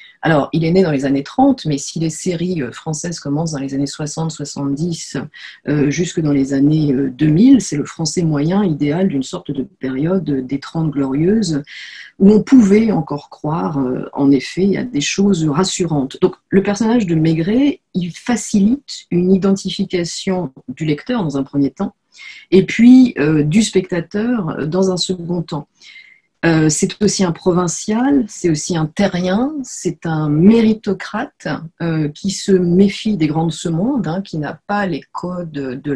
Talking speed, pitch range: 165 wpm, 150-190 Hz